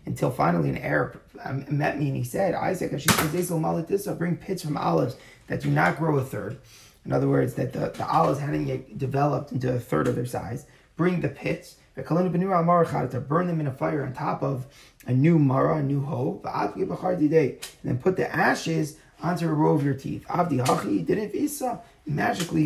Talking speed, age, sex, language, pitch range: 175 wpm, 30-49, male, English, 130-165 Hz